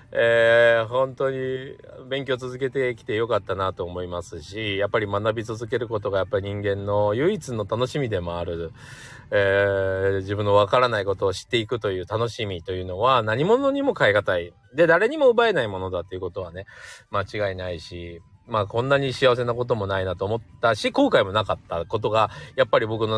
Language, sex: Japanese, male